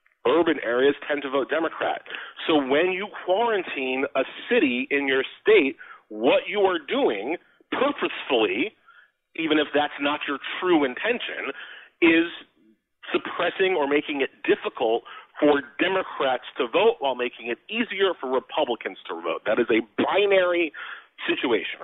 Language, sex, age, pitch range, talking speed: English, male, 40-59, 140-230 Hz, 135 wpm